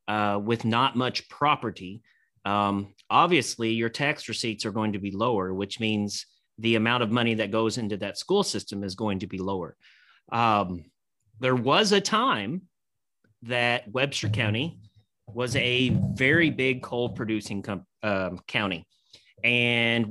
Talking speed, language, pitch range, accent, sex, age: 145 wpm, English, 105-130 Hz, American, male, 30-49